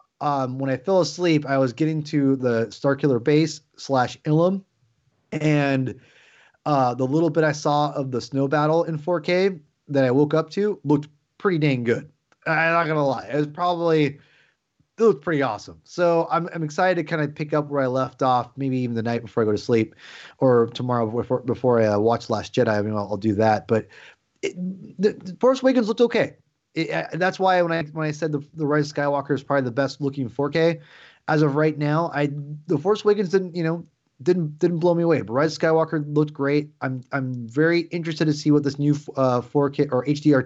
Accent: American